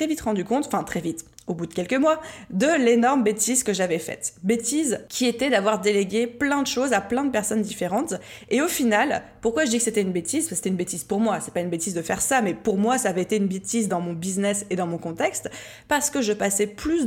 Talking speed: 260 wpm